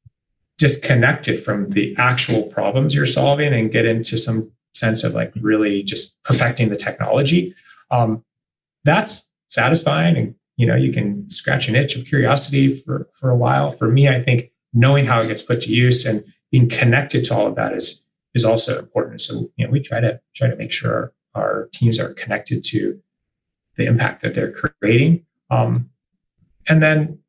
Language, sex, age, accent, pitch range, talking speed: English, male, 30-49, American, 115-140 Hz, 180 wpm